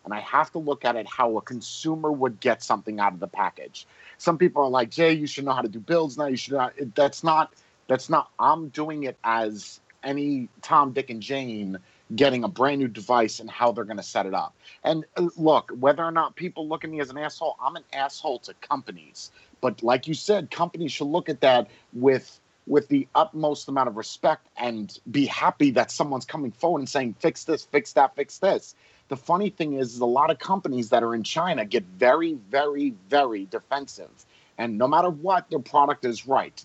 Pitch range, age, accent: 120-155 Hz, 30-49, American